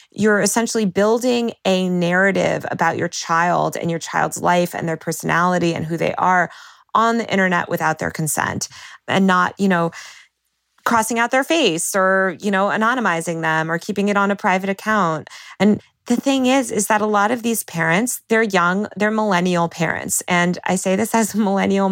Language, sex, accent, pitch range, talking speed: English, female, American, 175-220 Hz, 185 wpm